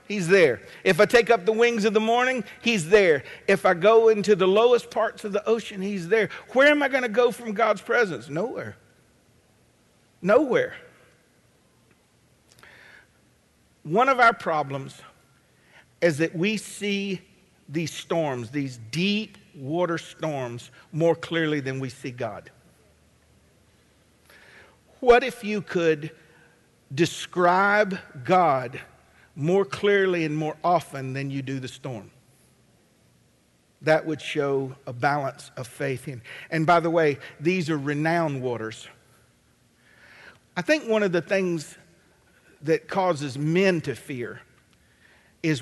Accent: American